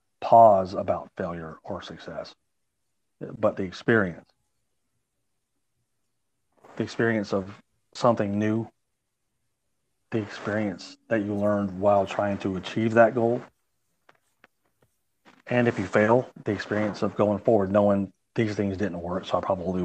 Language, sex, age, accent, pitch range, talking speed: English, male, 40-59, American, 95-110 Hz, 125 wpm